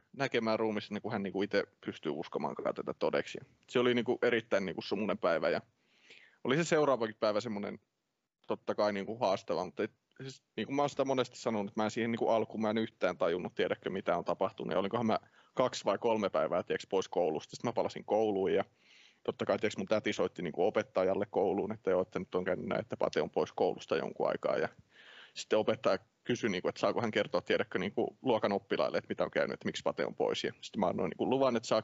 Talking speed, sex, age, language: 200 wpm, male, 30-49, Finnish